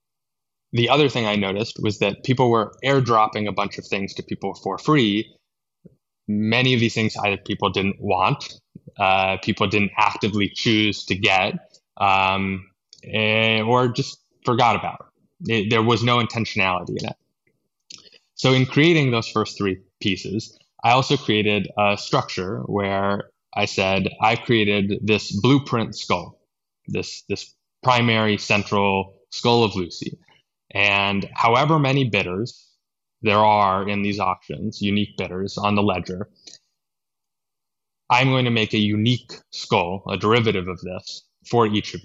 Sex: male